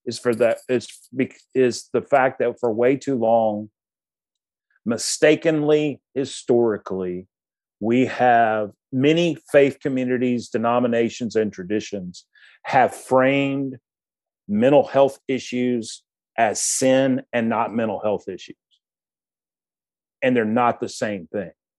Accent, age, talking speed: American, 40-59, 110 wpm